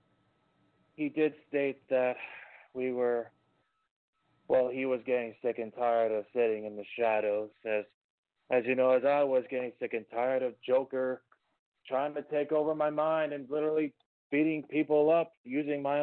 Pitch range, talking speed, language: 115-140 Hz, 165 wpm, English